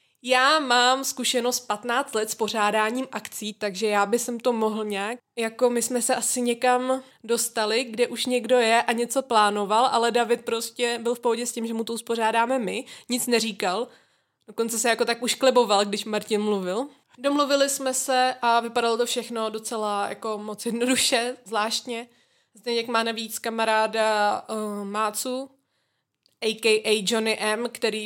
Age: 20-39